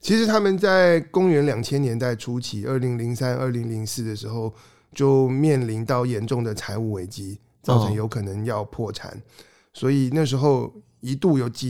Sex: male